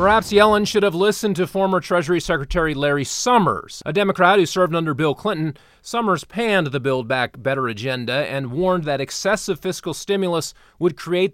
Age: 30-49